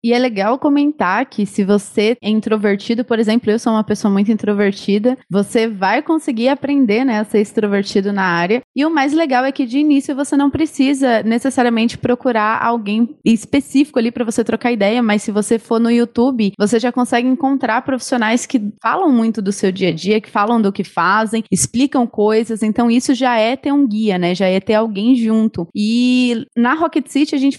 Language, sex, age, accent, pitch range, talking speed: Portuguese, female, 20-39, Brazilian, 215-270 Hz, 200 wpm